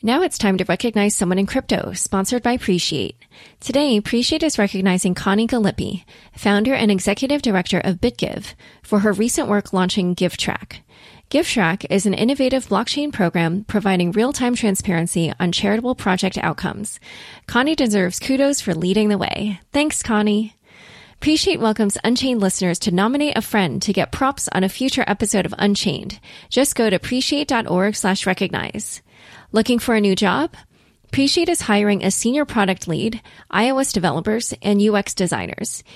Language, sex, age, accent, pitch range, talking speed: English, female, 20-39, American, 190-245 Hz, 150 wpm